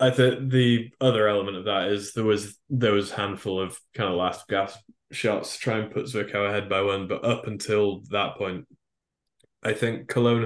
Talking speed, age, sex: 205 wpm, 20-39, male